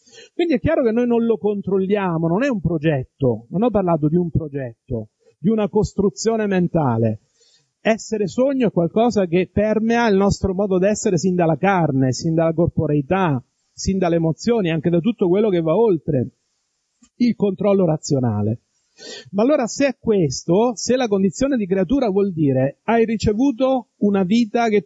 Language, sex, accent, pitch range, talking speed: Italian, male, native, 160-225 Hz, 165 wpm